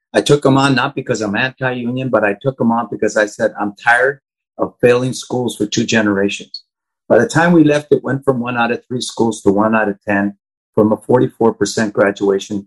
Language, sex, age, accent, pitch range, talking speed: English, male, 50-69, American, 115-155 Hz, 220 wpm